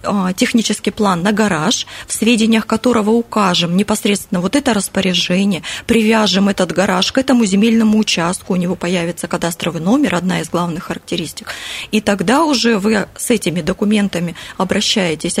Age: 20-39